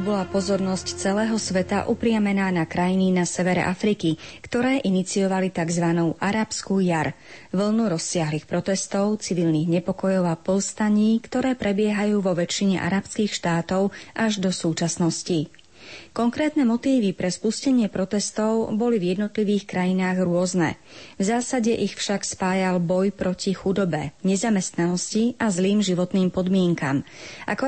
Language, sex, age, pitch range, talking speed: Slovak, female, 30-49, 175-215 Hz, 120 wpm